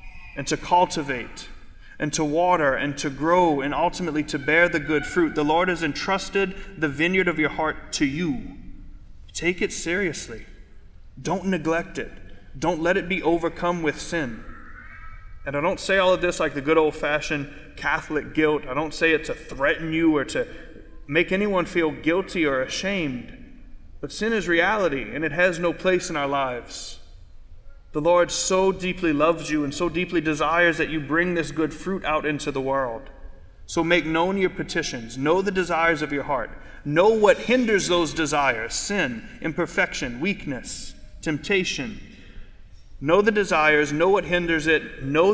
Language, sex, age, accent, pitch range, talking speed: English, male, 30-49, American, 140-175 Hz, 170 wpm